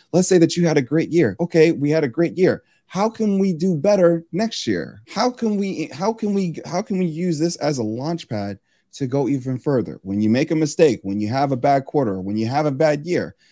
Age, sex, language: 30-49, male, English